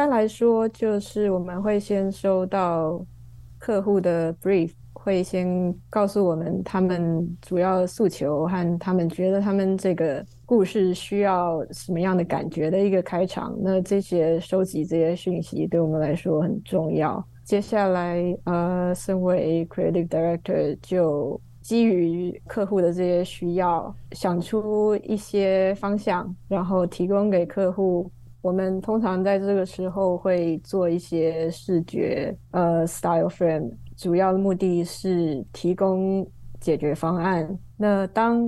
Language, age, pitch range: Chinese, 20-39, 165-195 Hz